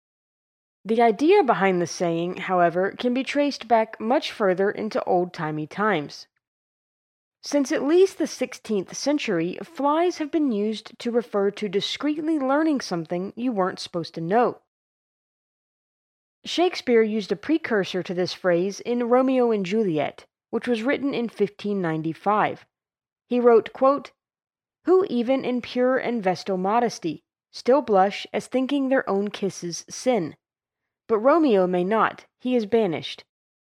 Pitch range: 185-255 Hz